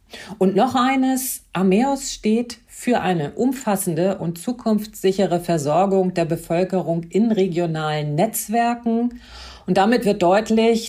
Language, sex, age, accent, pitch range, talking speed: German, female, 40-59, German, 175-225 Hz, 110 wpm